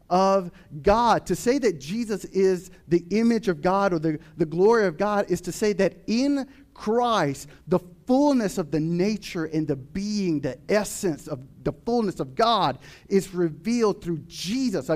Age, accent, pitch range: 40-59, American, 165-210 Hz